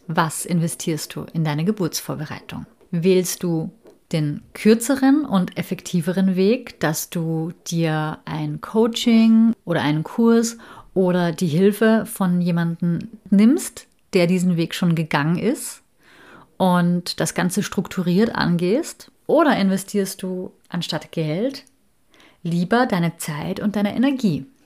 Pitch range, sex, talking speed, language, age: 170-220 Hz, female, 120 wpm, German, 30-49